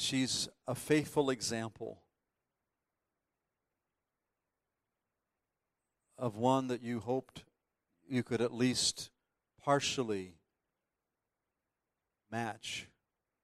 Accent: American